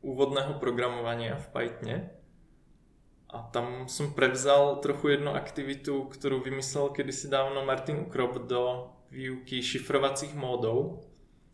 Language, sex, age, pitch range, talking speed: Czech, male, 20-39, 120-135 Hz, 110 wpm